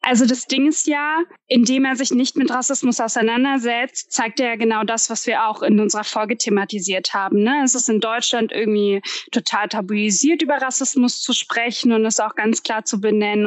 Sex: female